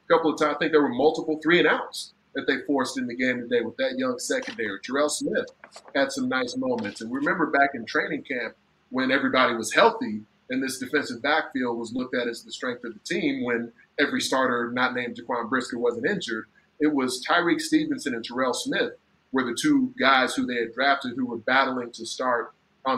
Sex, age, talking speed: male, 30-49, 215 wpm